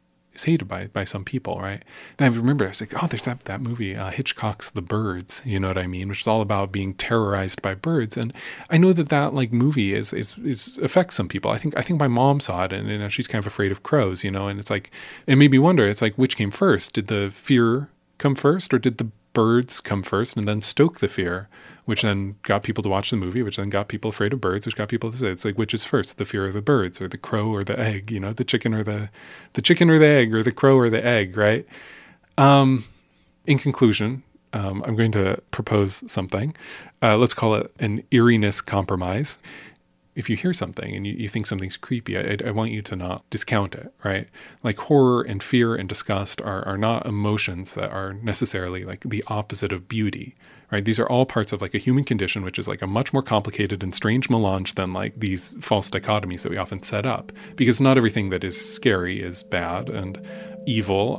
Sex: male